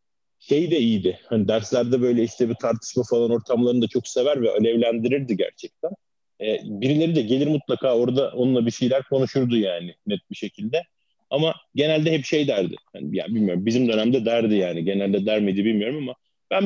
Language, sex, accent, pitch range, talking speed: Turkish, male, native, 105-135 Hz, 175 wpm